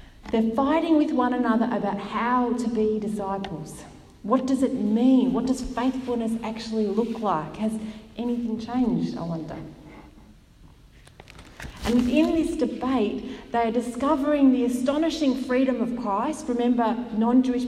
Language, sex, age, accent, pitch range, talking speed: English, female, 40-59, Australian, 200-265 Hz, 130 wpm